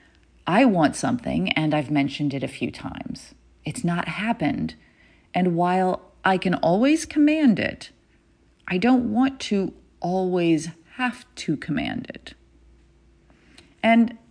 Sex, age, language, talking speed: female, 40-59, English, 125 wpm